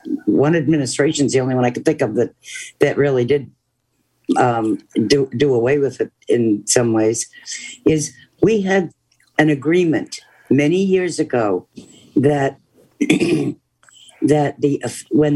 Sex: female